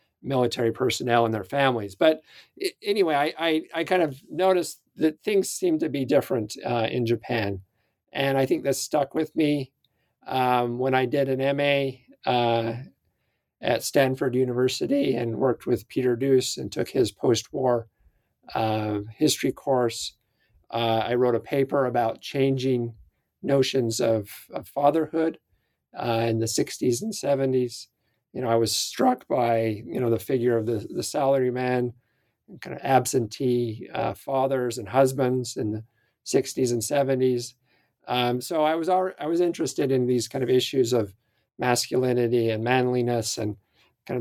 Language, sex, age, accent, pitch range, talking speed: English, male, 50-69, American, 115-140 Hz, 155 wpm